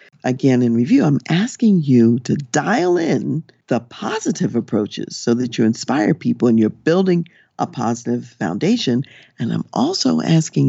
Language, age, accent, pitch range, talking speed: English, 50-69, American, 125-185 Hz, 150 wpm